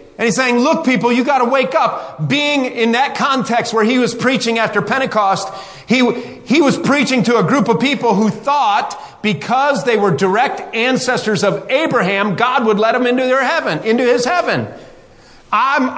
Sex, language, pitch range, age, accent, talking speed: male, English, 225-295 Hz, 40-59, American, 185 wpm